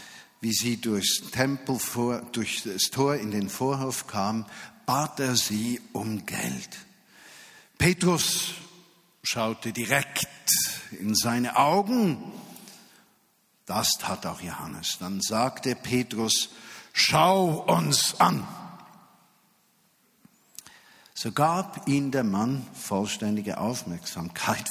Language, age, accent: German, 50-69, German